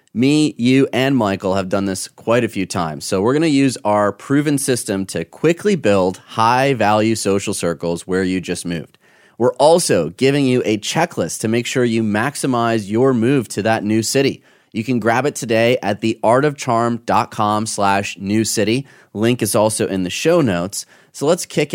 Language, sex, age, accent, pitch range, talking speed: English, male, 30-49, American, 90-115 Hz, 180 wpm